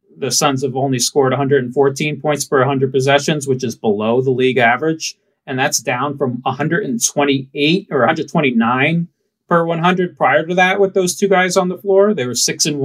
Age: 30-49